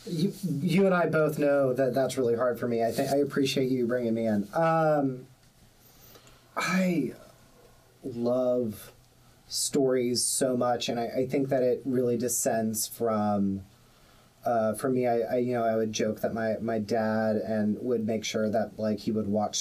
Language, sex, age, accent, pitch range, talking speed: English, male, 30-49, American, 115-135 Hz, 180 wpm